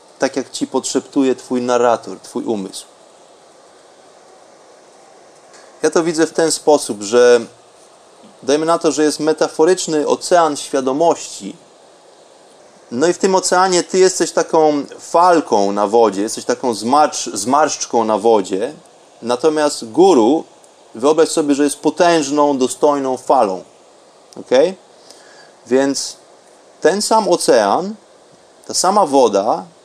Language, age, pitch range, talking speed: Polish, 30-49, 130-165 Hz, 115 wpm